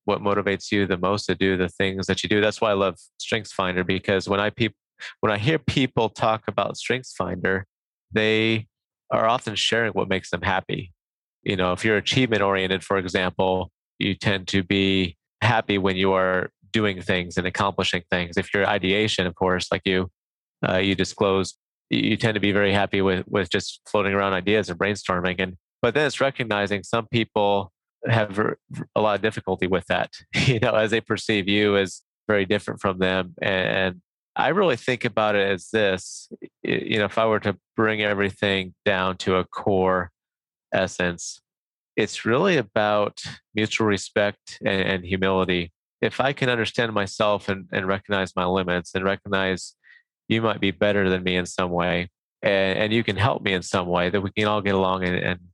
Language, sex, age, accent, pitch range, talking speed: English, male, 30-49, American, 95-105 Hz, 185 wpm